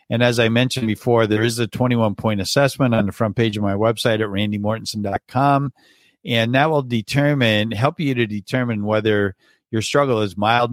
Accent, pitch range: American, 110-130 Hz